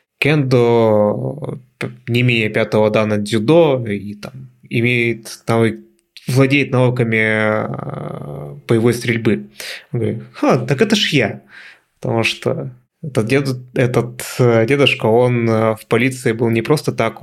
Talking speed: 120 wpm